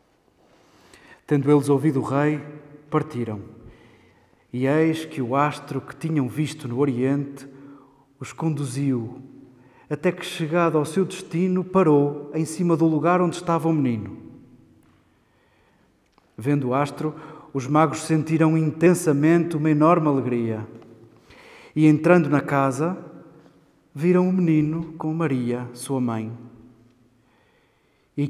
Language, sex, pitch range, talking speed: Portuguese, male, 135-160 Hz, 115 wpm